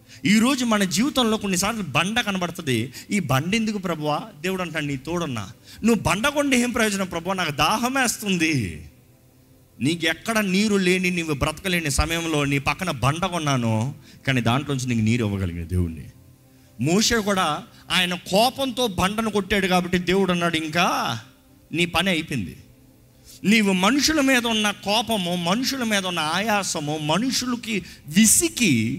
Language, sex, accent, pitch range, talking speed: Telugu, male, native, 140-215 Hz, 130 wpm